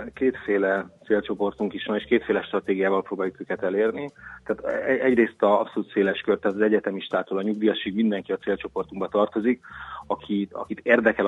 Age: 30-49